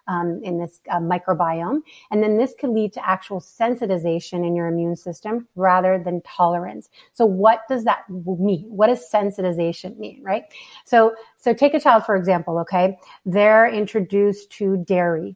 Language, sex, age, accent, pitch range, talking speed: English, female, 30-49, American, 180-220 Hz, 165 wpm